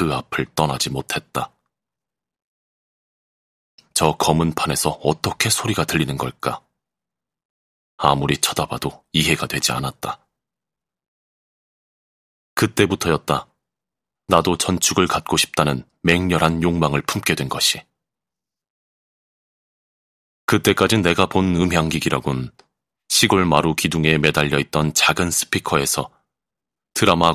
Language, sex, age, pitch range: Korean, male, 30-49, 75-90 Hz